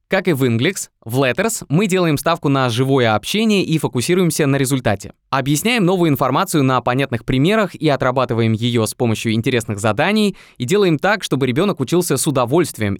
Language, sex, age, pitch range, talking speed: Russian, male, 20-39, 120-170 Hz, 170 wpm